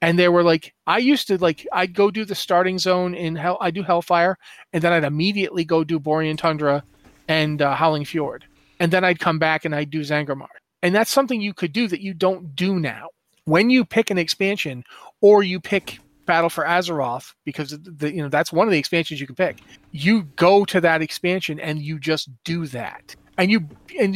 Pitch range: 155-195 Hz